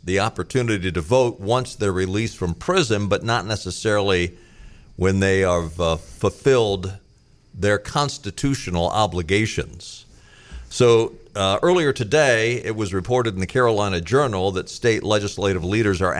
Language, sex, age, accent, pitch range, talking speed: English, male, 50-69, American, 90-115 Hz, 135 wpm